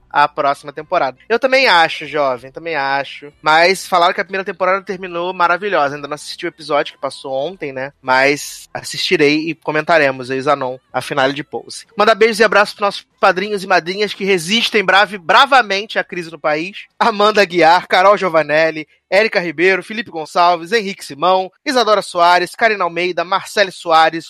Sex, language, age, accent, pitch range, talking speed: male, Portuguese, 20-39, Brazilian, 160-210 Hz, 165 wpm